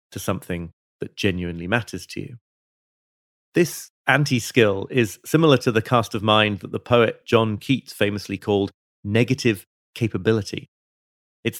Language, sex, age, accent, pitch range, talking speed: English, male, 30-49, British, 95-130 Hz, 140 wpm